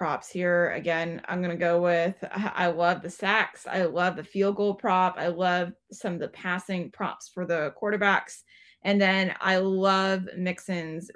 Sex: female